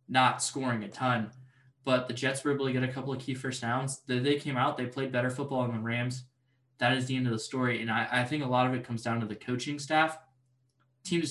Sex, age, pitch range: male, 10-29, 115-130 Hz